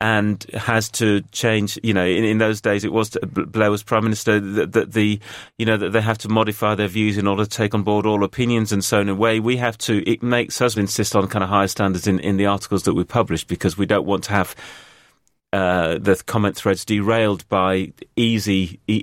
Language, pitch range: English, 100-110 Hz